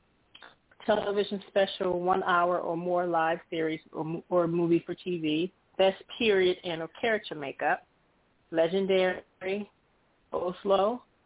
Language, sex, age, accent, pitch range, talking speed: English, female, 30-49, American, 165-195 Hz, 110 wpm